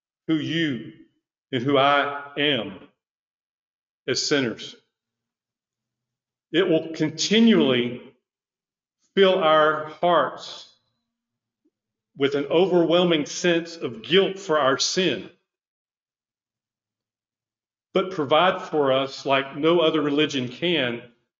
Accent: American